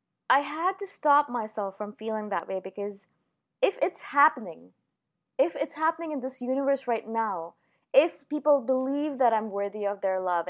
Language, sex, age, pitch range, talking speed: English, female, 20-39, 210-265 Hz, 170 wpm